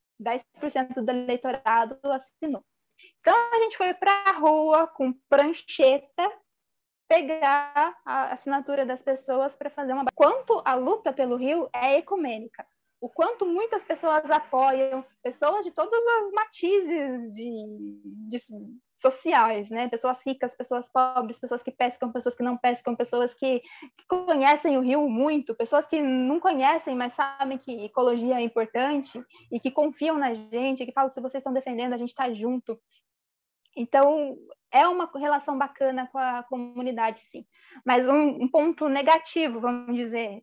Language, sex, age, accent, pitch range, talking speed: Portuguese, female, 20-39, Brazilian, 245-305 Hz, 150 wpm